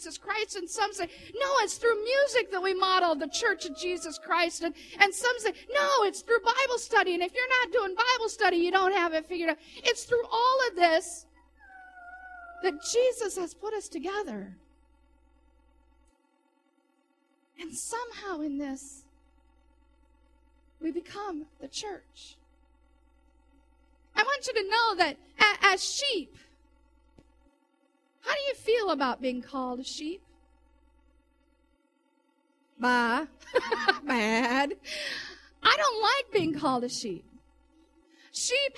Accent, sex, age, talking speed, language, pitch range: American, female, 40-59, 125 wpm, English, 285-410 Hz